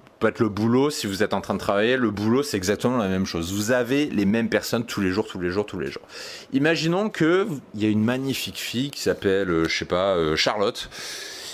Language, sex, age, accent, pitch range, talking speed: French, male, 30-49, French, 110-145 Hz, 255 wpm